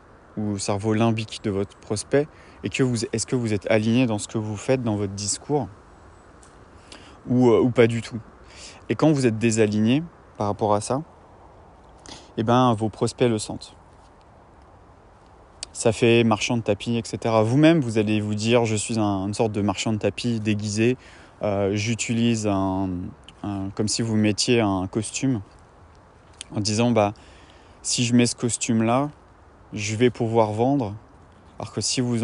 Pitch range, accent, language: 100-120 Hz, French, French